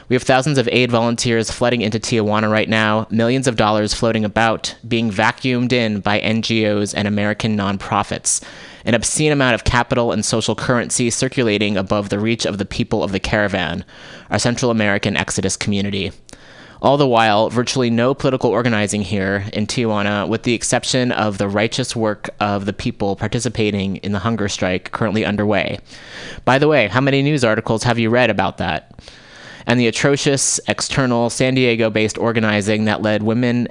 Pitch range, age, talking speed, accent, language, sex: 105-120 Hz, 20-39, 170 wpm, American, English, male